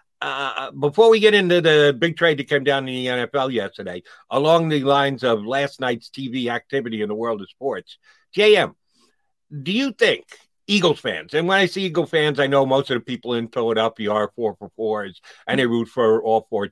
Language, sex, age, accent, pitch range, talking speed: English, male, 50-69, American, 120-170 Hz, 210 wpm